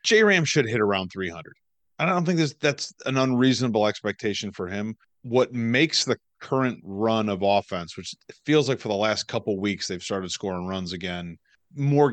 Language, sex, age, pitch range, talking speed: English, male, 30-49, 95-125 Hz, 175 wpm